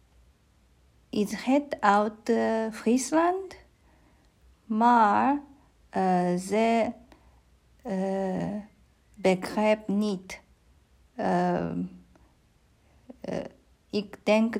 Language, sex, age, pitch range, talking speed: Dutch, female, 50-69, 175-220 Hz, 55 wpm